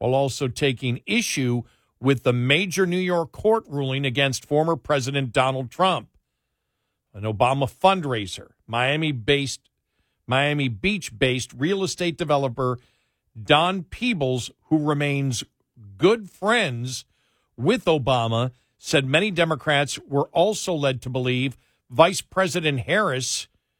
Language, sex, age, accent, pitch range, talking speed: English, male, 50-69, American, 125-170 Hz, 110 wpm